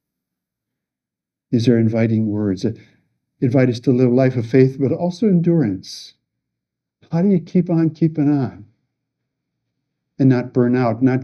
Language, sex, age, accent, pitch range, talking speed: English, male, 60-79, American, 115-150 Hz, 150 wpm